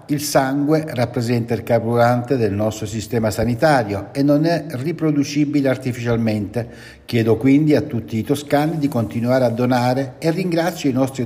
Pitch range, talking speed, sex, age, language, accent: 100-145 Hz, 150 wpm, male, 60-79, Italian, native